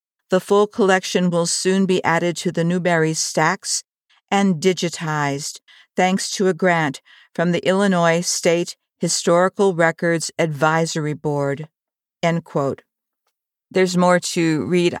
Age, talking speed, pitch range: 50-69, 115 wpm, 165-195 Hz